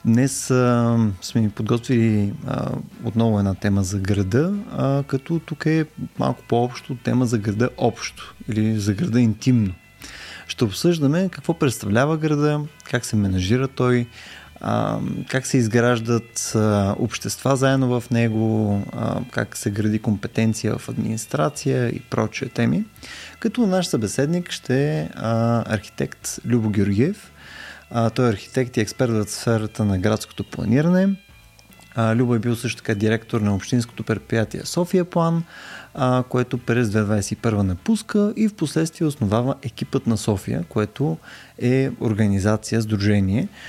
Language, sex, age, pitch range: Bulgarian, male, 20-39, 110-135 Hz